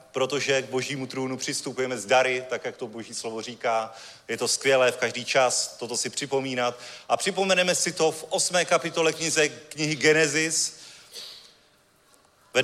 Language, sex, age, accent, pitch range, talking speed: Czech, male, 30-49, native, 135-160 Hz, 155 wpm